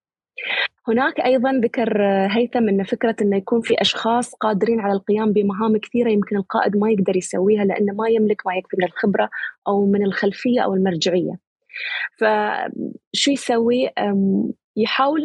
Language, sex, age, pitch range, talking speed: Arabic, female, 20-39, 195-230 Hz, 140 wpm